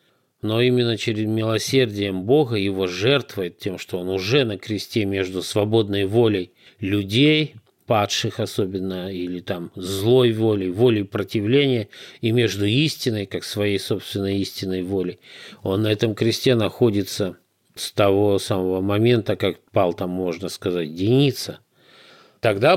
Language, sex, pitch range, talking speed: Russian, male, 95-125 Hz, 130 wpm